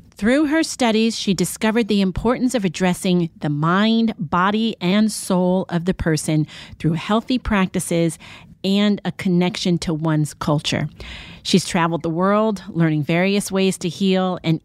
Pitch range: 160-205 Hz